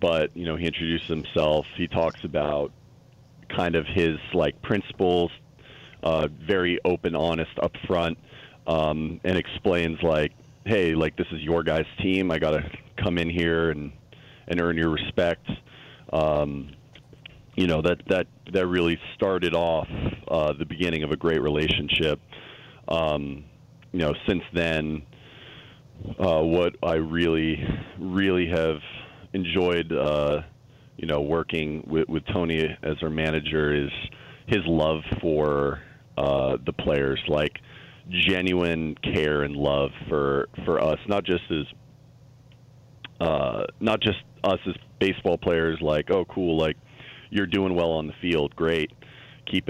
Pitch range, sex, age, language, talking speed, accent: 75-95 Hz, male, 40-59, English, 140 wpm, American